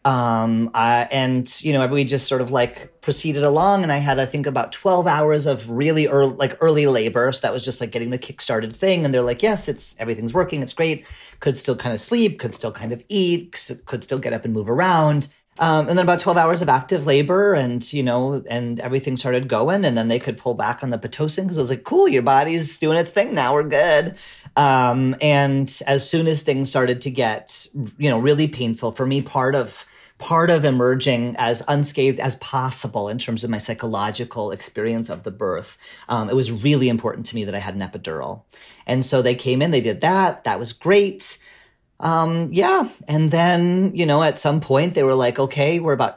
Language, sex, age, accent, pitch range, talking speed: English, male, 40-59, American, 125-160 Hz, 220 wpm